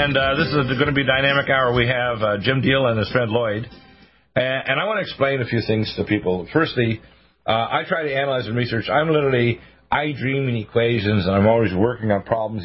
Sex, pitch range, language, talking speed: male, 95-125 Hz, English, 230 wpm